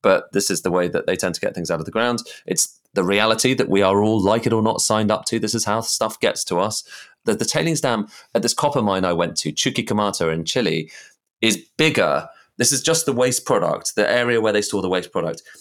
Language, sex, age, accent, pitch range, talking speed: English, male, 30-49, British, 95-125 Hz, 255 wpm